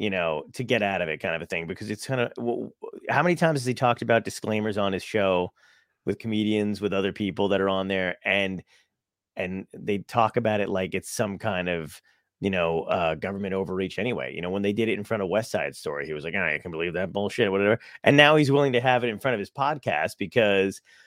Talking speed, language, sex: 250 wpm, English, male